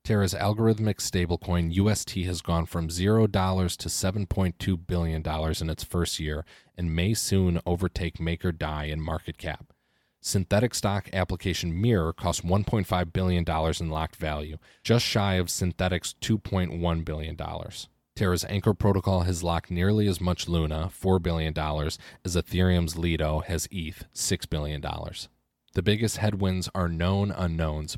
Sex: male